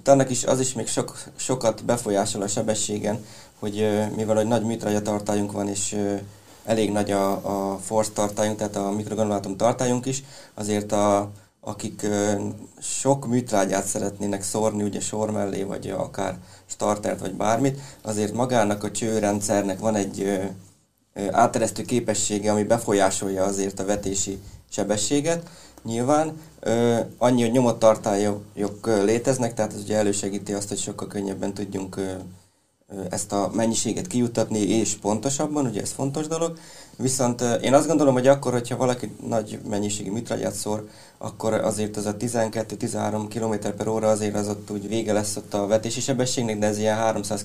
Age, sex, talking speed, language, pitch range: 20-39, male, 145 wpm, Hungarian, 100-115 Hz